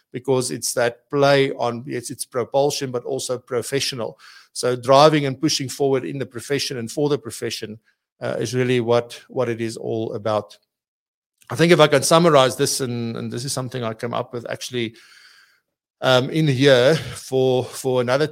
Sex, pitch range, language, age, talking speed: male, 120-140 Hz, English, 60-79, 180 wpm